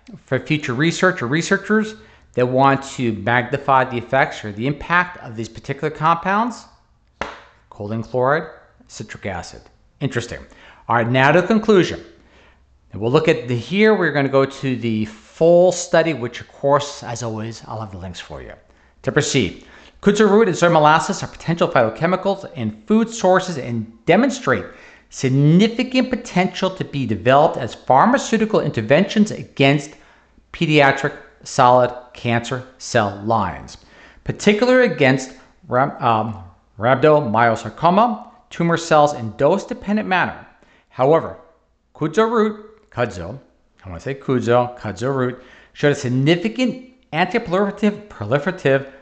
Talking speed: 135 wpm